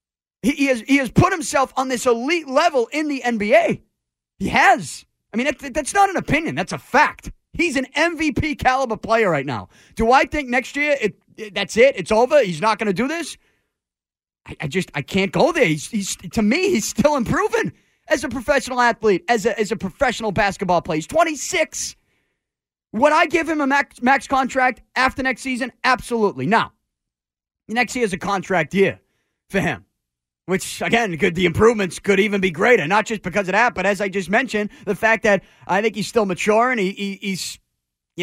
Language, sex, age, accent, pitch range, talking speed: English, male, 30-49, American, 195-275 Hz, 200 wpm